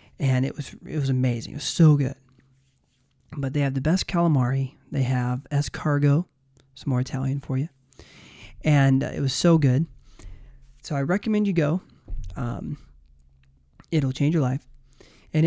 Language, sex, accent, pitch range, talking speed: English, male, American, 130-155 Hz, 160 wpm